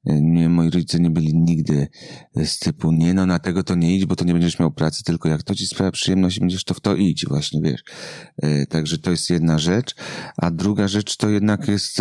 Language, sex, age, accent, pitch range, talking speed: Polish, male, 30-49, native, 85-105 Hz, 225 wpm